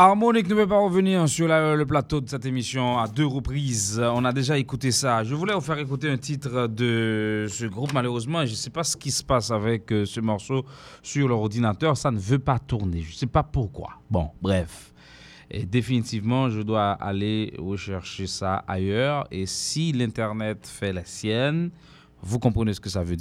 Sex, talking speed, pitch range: male, 195 wpm, 100-135 Hz